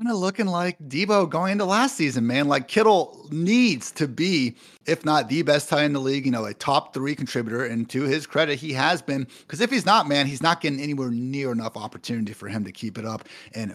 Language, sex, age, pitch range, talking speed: English, male, 30-49, 115-150 Hz, 240 wpm